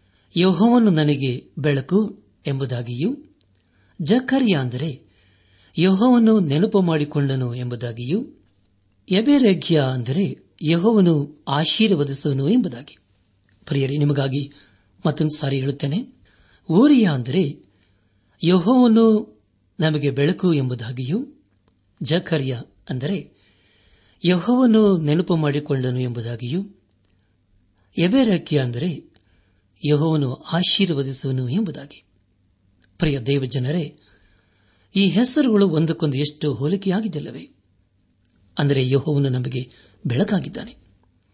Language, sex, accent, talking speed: Kannada, male, native, 70 wpm